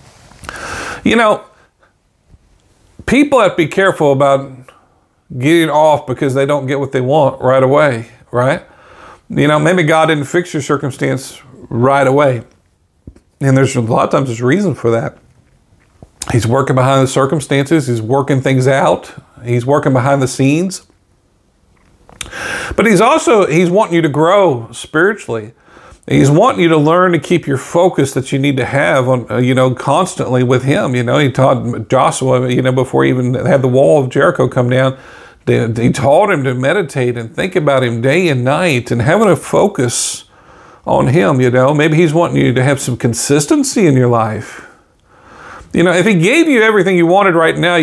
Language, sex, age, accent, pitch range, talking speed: English, male, 50-69, American, 125-155 Hz, 180 wpm